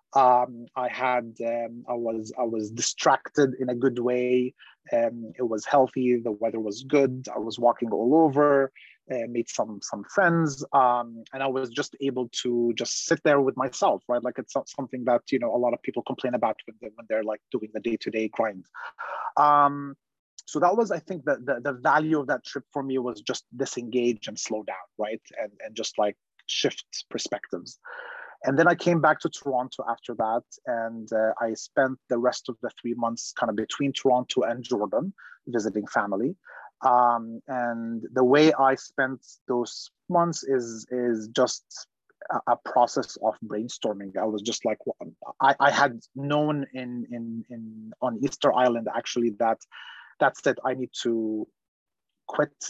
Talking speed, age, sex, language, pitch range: 185 wpm, 30-49, male, English, 115-135 Hz